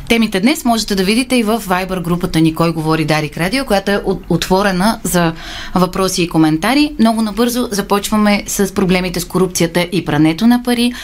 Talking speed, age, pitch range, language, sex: 165 wpm, 30-49, 160-200 Hz, Bulgarian, female